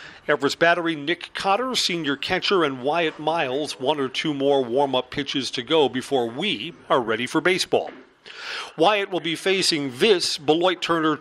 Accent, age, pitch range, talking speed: American, 40-59, 140-190 Hz, 155 wpm